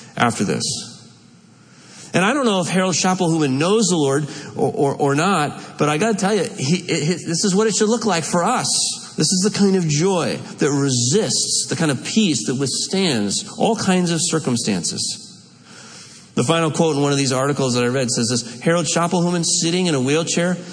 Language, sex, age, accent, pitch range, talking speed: English, male, 40-59, American, 130-180 Hz, 205 wpm